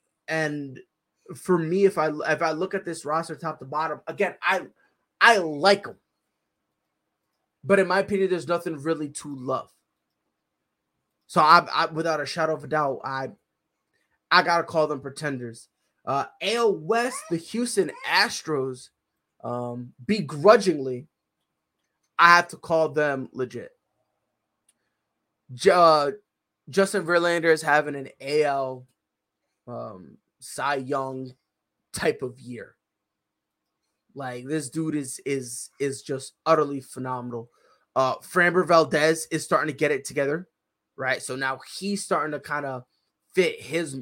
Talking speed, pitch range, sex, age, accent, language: 135 wpm, 135-175 Hz, male, 20-39, American, English